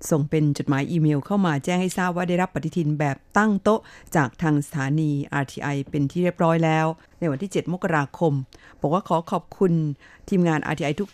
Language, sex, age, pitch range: Thai, female, 50-69, 145-175 Hz